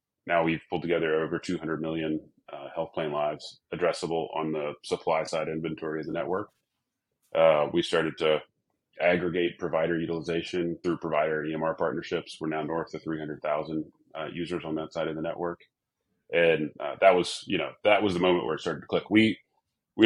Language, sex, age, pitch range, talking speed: English, male, 30-49, 80-85 Hz, 185 wpm